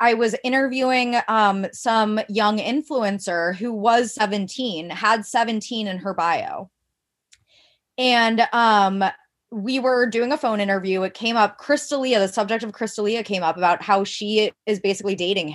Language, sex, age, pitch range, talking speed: English, female, 20-39, 205-260 Hz, 150 wpm